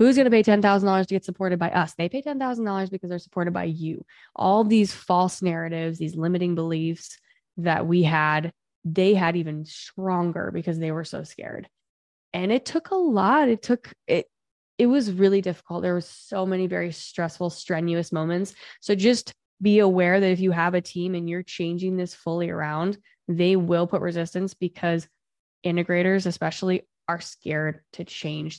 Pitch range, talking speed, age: 170-200 Hz, 175 wpm, 10-29